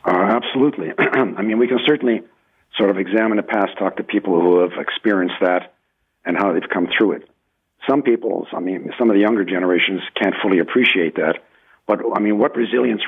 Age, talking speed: 50-69, 195 wpm